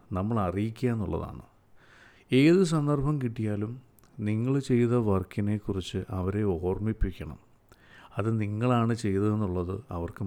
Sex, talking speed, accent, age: male, 80 wpm, native, 50-69